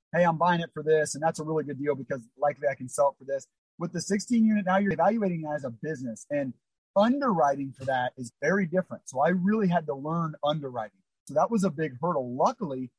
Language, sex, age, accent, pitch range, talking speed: English, male, 30-49, American, 140-175 Hz, 240 wpm